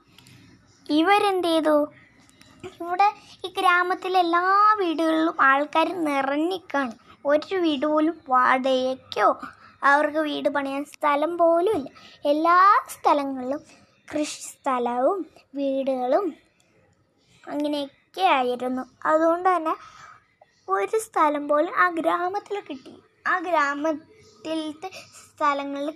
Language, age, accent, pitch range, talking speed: Malayalam, 20-39, native, 290-365 Hz, 85 wpm